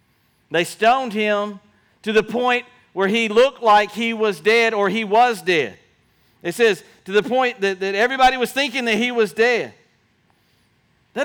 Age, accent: 40-59, American